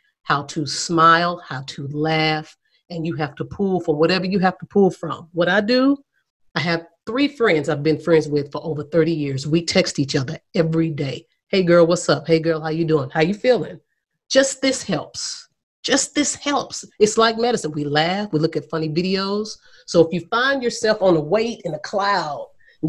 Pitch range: 155-200 Hz